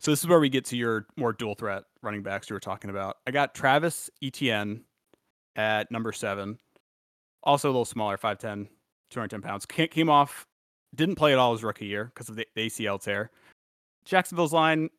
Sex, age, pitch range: male, 20-39, 105-135 Hz